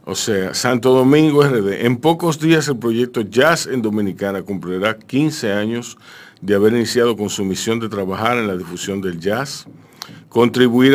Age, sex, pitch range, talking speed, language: 50-69, male, 95-120 Hz, 165 wpm, Spanish